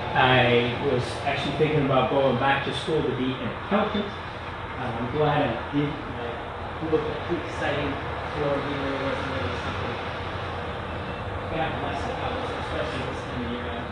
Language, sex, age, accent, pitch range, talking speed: English, male, 30-49, American, 100-145 Hz, 140 wpm